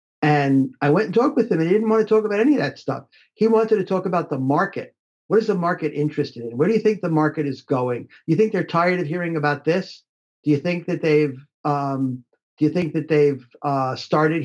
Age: 50-69